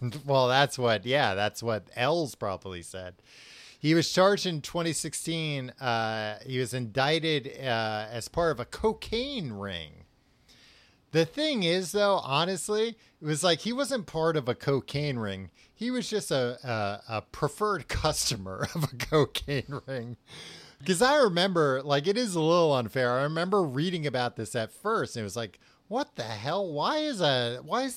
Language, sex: English, male